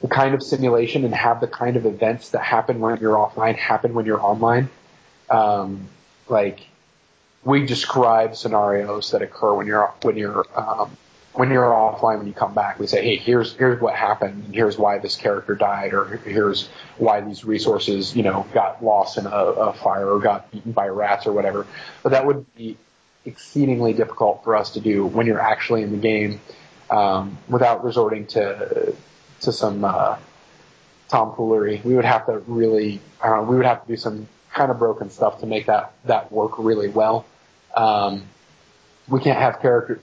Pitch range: 105-130 Hz